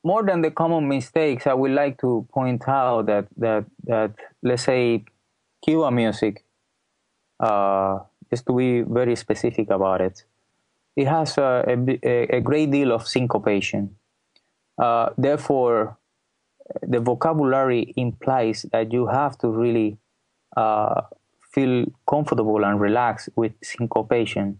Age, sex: 20-39, male